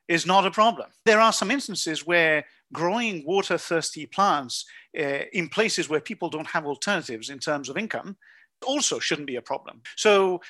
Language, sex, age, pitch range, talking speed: English, male, 50-69, 145-195 Hz, 175 wpm